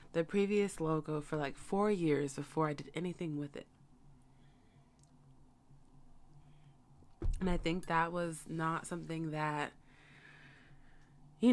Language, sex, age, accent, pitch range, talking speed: English, female, 20-39, American, 145-160 Hz, 115 wpm